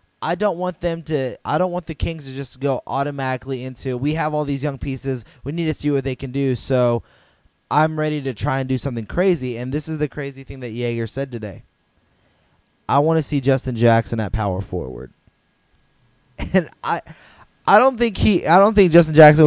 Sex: male